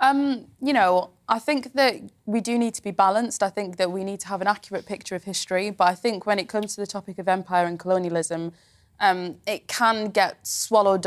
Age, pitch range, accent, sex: 20-39, 170-205 Hz, British, female